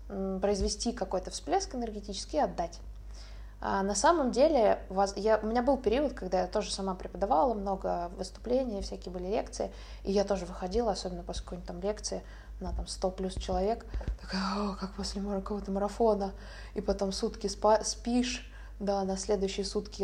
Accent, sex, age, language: native, female, 20-39, Russian